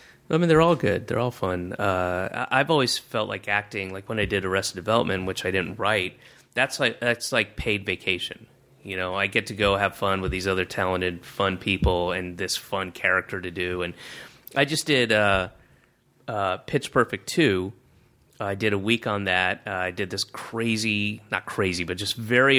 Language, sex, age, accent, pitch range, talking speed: English, male, 30-49, American, 95-115 Hz, 200 wpm